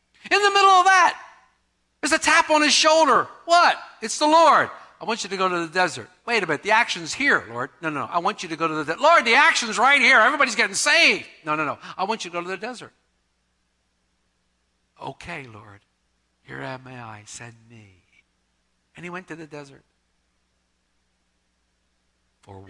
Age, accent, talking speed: 60-79, American, 195 wpm